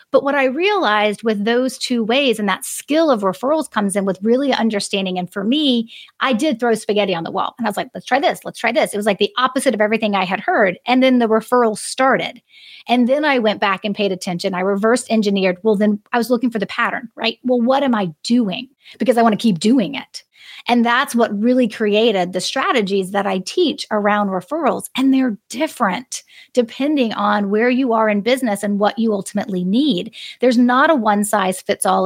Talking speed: 215 wpm